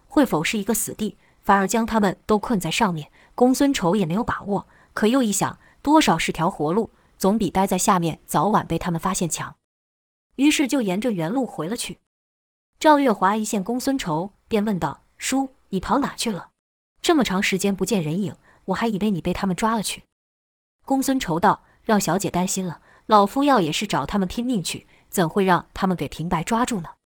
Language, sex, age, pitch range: Chinese, female, 20-39, 180-240 Hz